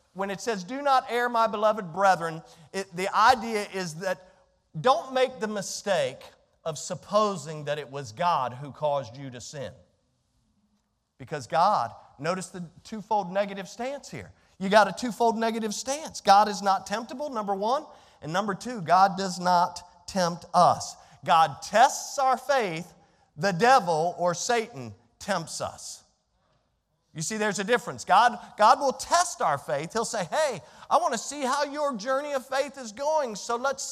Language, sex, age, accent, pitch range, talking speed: English, male, 40-59, American, 150-220 Hz, 165 wpm